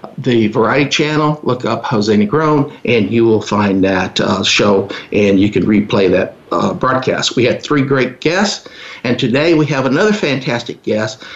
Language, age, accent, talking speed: English, 50-69, American, 175 wpm